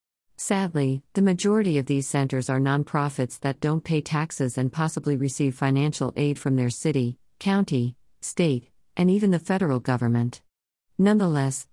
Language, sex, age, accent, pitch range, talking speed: English, female, 50-69, American, 130-165 Hz, 145 wpm